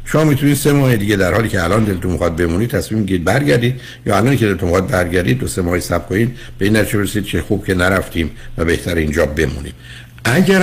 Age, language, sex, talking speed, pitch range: 60-79, Persian, male, 205 wpm, 85-120 Hz